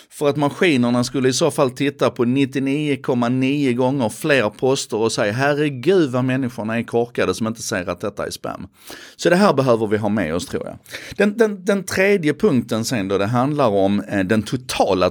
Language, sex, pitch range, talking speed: Swedish, male, 100-135 Hz, 195 wpm